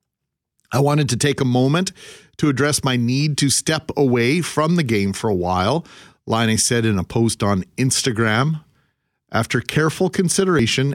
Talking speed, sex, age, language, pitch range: 165 wpm, male, 40-59, English, 115-145 Hz